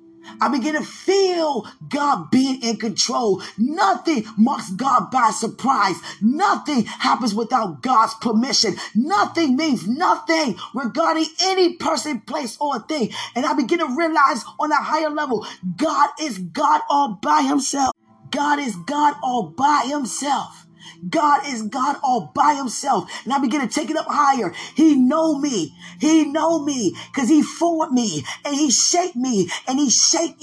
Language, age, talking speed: English, 20-39, 155 wpm